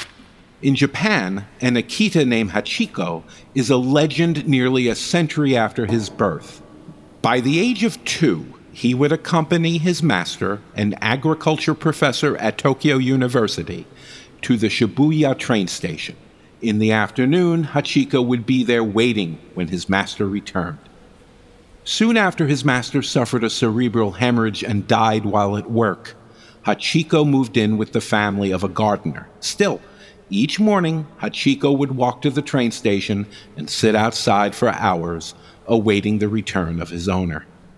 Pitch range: 100-135 Hz